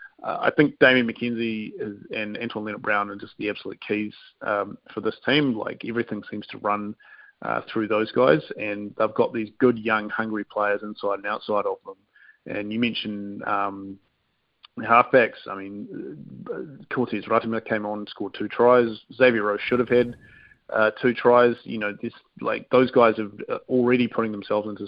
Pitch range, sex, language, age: 105-120 Hz, male, English, 30-49